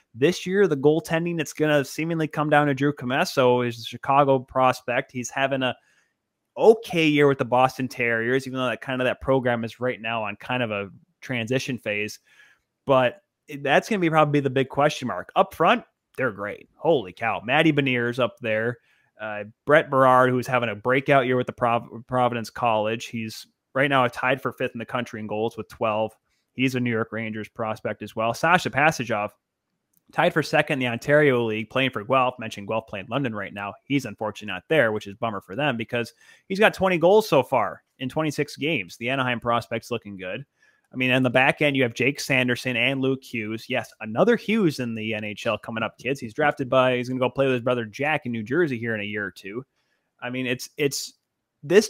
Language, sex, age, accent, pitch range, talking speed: English, male, 20-39, American, 115-145 Hz, 215 wpm